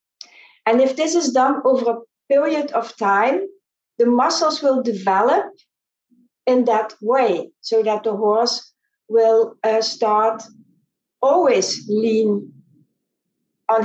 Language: English